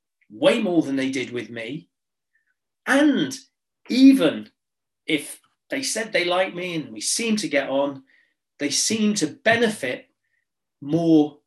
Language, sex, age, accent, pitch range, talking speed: English, male, 40-59, British, 145-230 Hz, 135 wpm